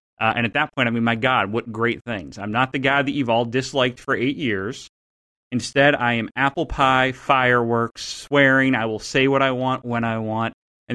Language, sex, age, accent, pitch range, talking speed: English, male, 30-49, American, 115-145 Hz, 220 wpm